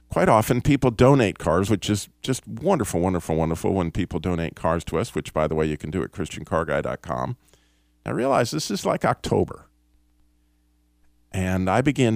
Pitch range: 70-110 Hz